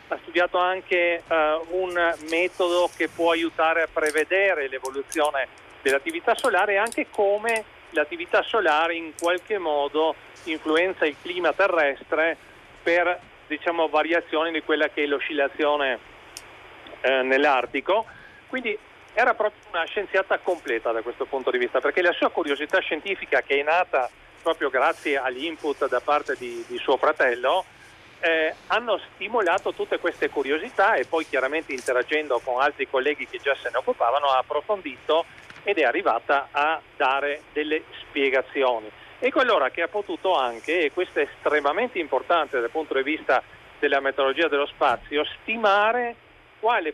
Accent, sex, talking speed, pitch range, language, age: native, male, 145 wpm, 145-195 Hz, Italian, 40-59